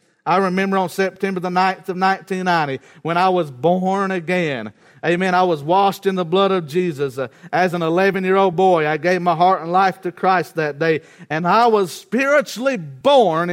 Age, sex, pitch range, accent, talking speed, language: 50-69, male, 165-195 Hz, American, 180 wpm, English